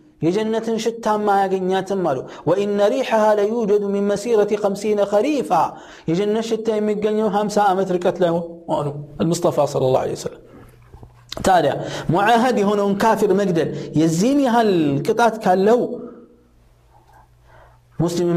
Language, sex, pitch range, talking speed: Amharic, male, 160-220 Hz, 115 wpm